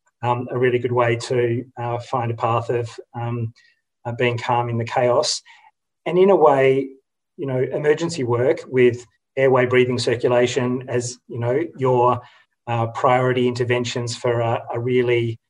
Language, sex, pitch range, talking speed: English, male, 120-135 Hz, 160 wpm